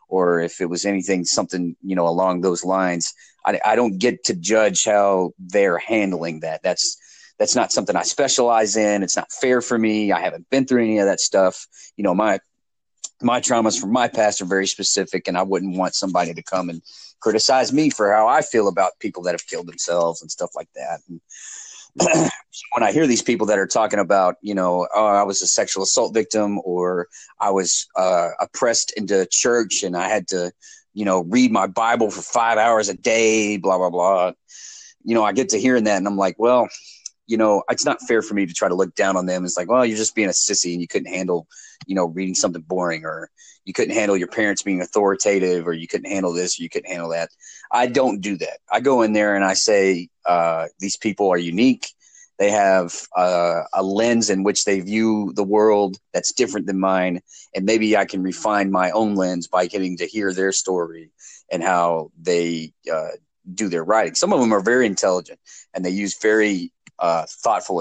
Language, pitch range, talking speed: English, 90-110 Hz, 215 wpm